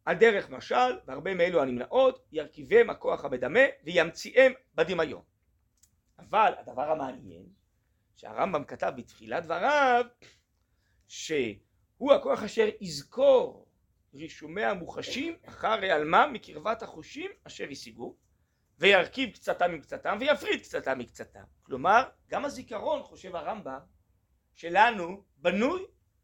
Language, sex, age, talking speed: Hebrew, male, 40-59, 100 wpm